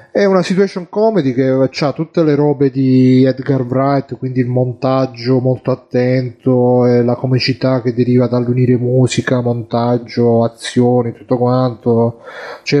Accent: native